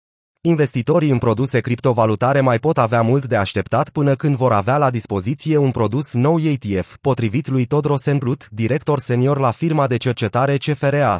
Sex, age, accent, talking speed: male, 30-49, native, 165 wpm